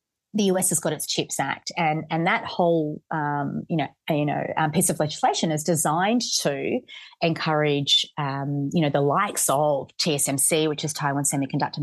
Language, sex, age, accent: English, female, 30-49, Australian